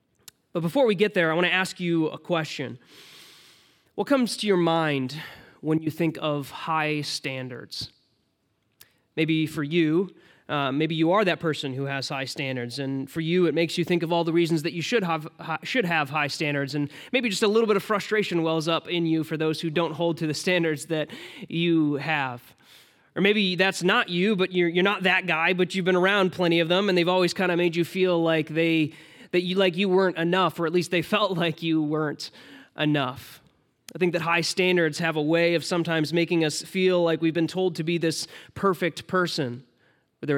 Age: 20-39